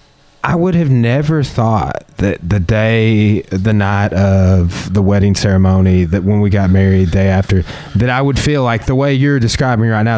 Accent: American